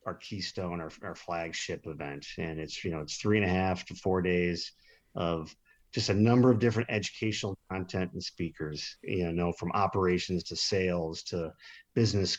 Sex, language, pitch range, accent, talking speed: male, English, 90-110 Hz, American, 175 wpm